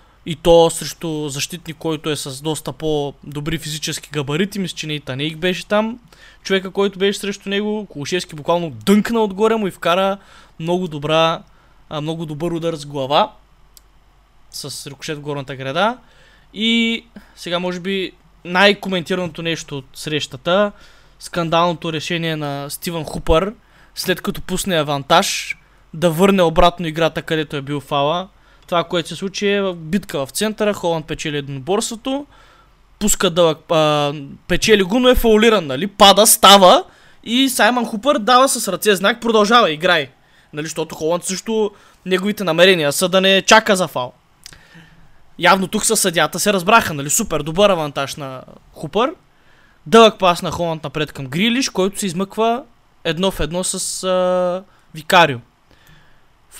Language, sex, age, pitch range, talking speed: Bulgarian, male, 20-39, 155-205 Hz, 150 wpm